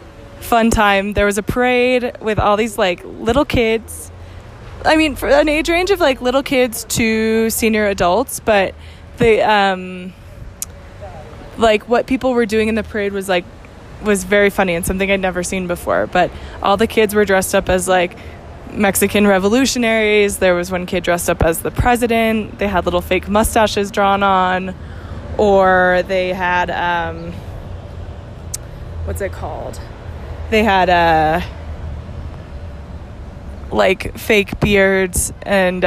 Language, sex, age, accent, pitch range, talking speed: English, female, 20-39, American, 160-215 Hz, 145 wpm